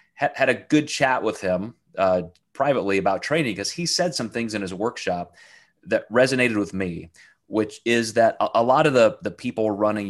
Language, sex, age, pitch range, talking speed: English, male, 30-49, 95-120 Hz, 190 wpm